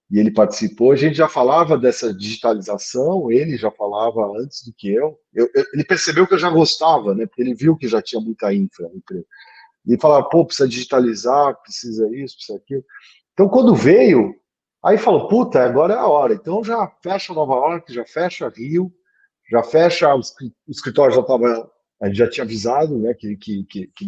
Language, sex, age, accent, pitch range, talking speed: Portuguese, male, 40-59, Brazilian, 120-180 Hz, 195 wpm